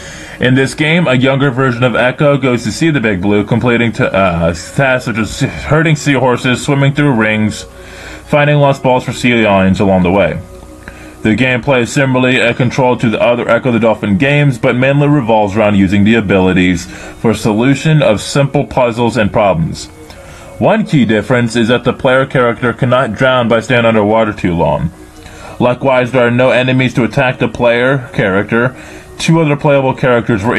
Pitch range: 105-130 Hz